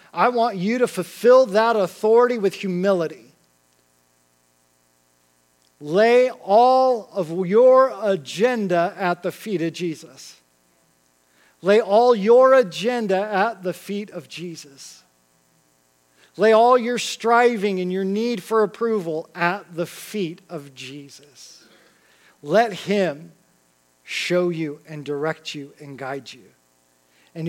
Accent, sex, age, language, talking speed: American, male, 40-59, English, 115 wpm